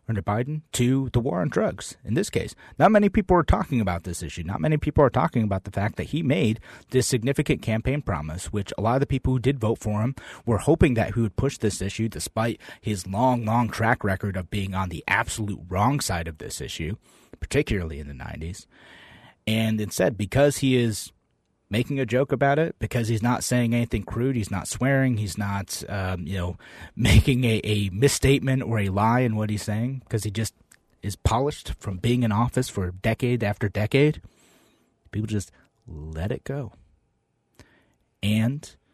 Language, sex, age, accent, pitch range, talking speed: English, male, 30-49, American, 100-125 Hz, 195 wpm